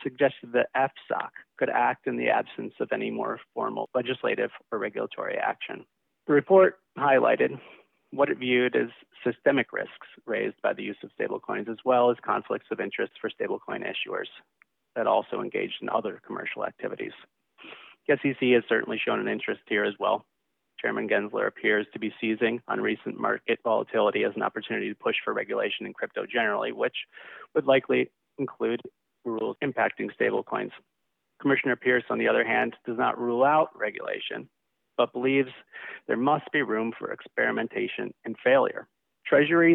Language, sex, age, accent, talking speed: English, male, 30-49, American, 160 wpm